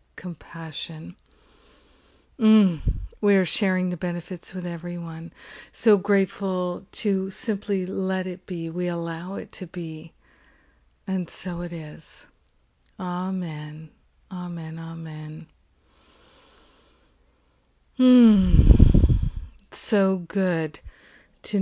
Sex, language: female, English